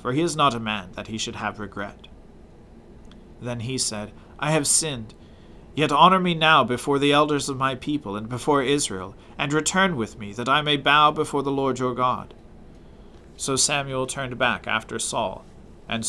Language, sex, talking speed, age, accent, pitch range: English, male, 185 wpm, 40-59, American, 115-145 Hz